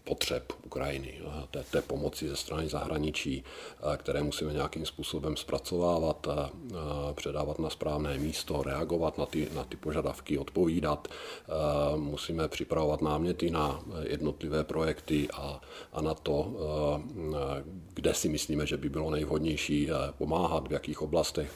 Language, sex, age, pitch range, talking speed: Czech, male, 50-69, 75-80 Hz, 120 wpm